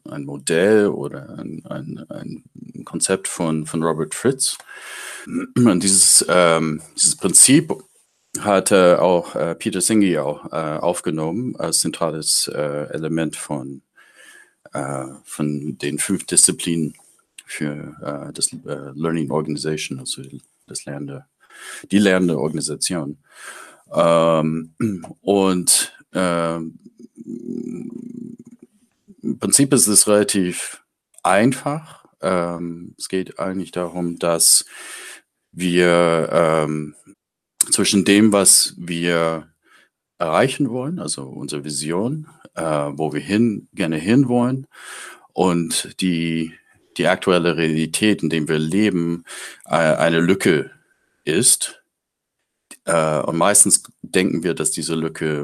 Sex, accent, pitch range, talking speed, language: male, German, 75-100 Hz, 105 wpm, German